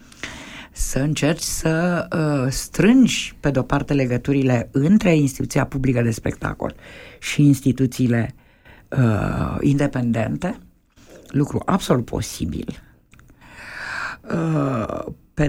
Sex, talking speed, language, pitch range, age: female, 80 wpm, Romanian, 120-150 Hz, 50-69